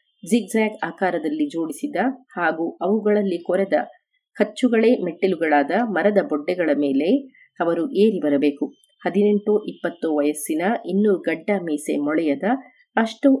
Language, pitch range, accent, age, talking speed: Kannada, 170-225 Hz, native, 30-49, 100 wpm